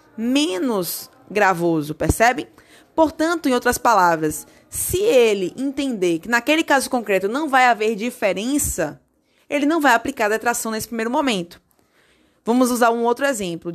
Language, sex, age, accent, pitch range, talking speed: Portuguese, female, 20-39, Brazilian, 200-275 Hz, 140 wpm